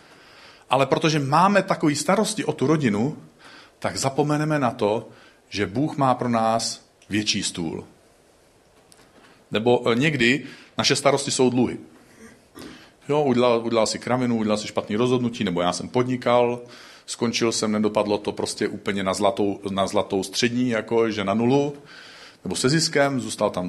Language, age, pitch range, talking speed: Czech, 40-59, 115-150 Hz, 150 wpm